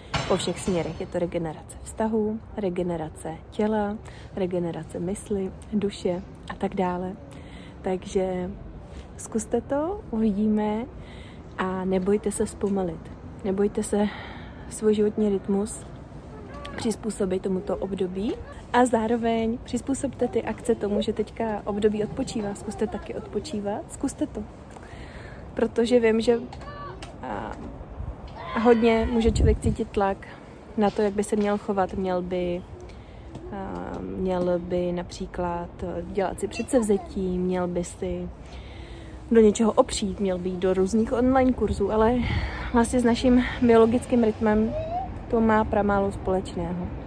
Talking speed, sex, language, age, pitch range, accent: 120 wpm, female, Czech, 30-49, 185-225 Hz, native